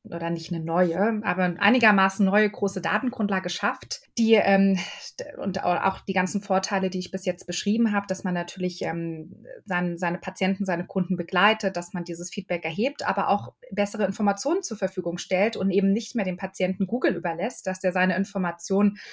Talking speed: 180 wpm